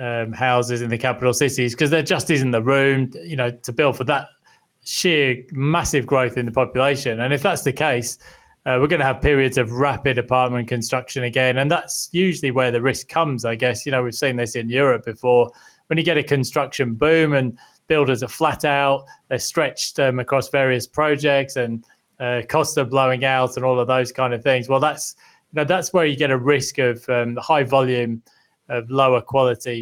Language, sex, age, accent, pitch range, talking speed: English, male, 20-39, British, 125-145 Hz, 210 wpm